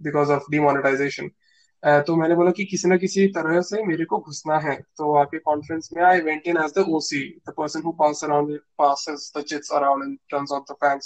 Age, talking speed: 20-39, 140 wpm